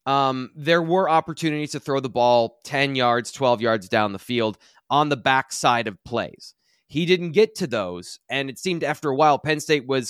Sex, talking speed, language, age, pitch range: male, 210 wpm, English, 20-39, 120-150 Hz